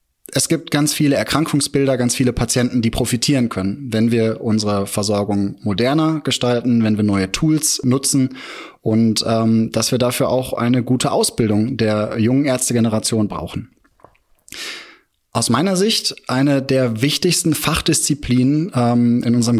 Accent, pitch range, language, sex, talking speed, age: German, 110-140 Hz, German, male, 140 wpm, 30-49